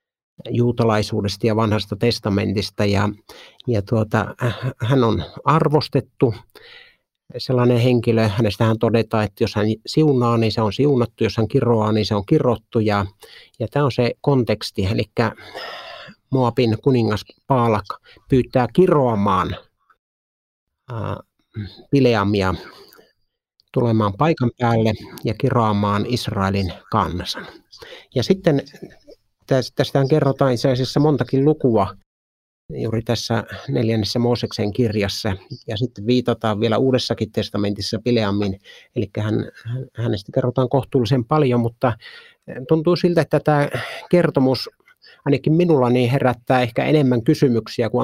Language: Finnish